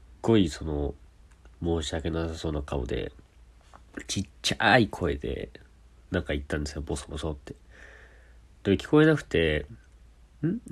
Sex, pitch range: male, 70-110 Hz